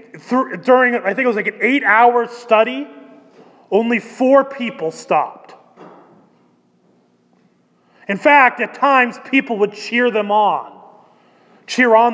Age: 30-49